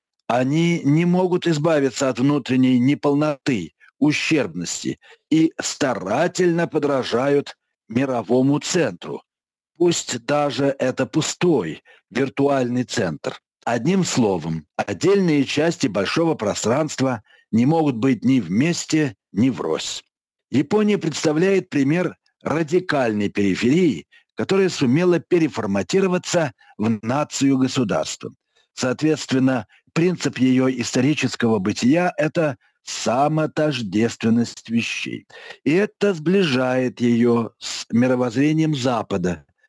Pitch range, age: 125-165 Hz, 60-79